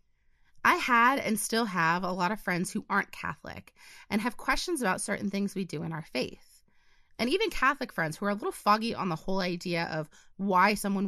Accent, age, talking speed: American, 30-49, 210 wpm